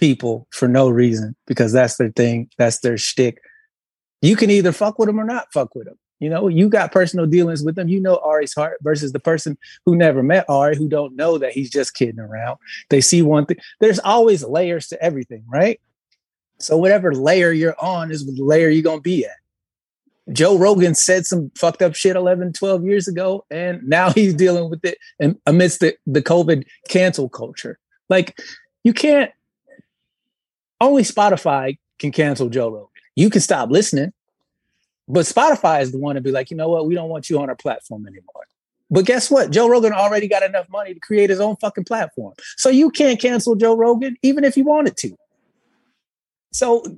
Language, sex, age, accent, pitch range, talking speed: English, male, 30-49, American, 145-205 Hz, 195 wpm